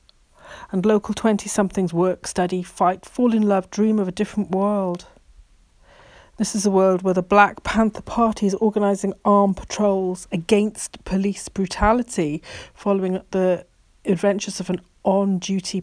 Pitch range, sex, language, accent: 180-215 Hz, female, English, British